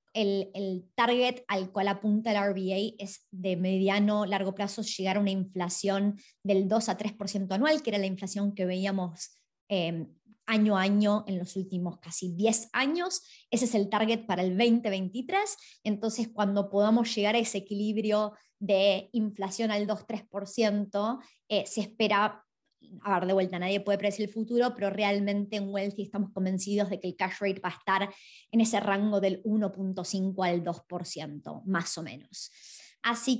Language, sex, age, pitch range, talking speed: Spanish, male, 20-39, 190-225 Hz, 165 wpm